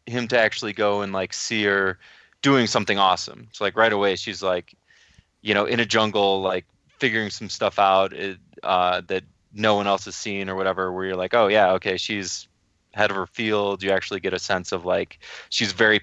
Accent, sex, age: American, male, 20-39